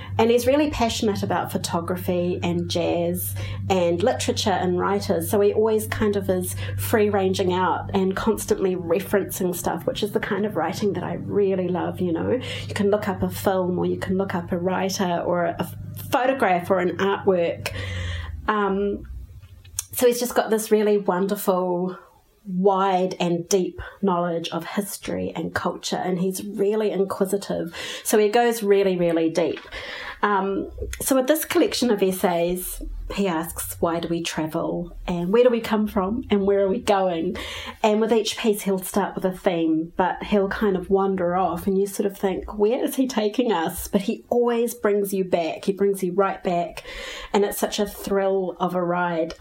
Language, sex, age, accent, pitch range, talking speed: English, female, 30-49, Australian, 175-210 Hz, 180 wpm